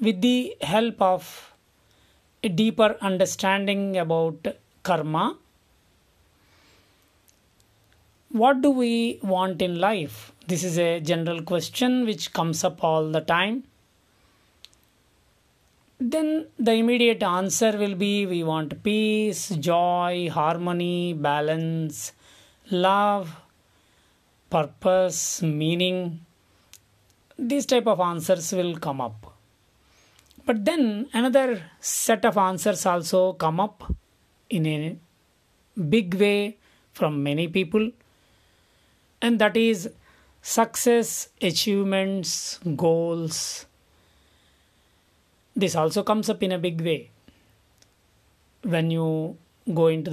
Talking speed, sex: 100 wpm, male